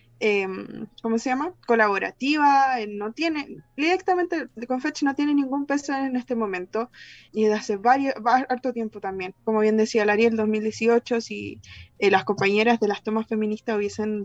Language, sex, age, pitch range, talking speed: Spanish, female, 20-39, 205-270 Hz, 165 wpm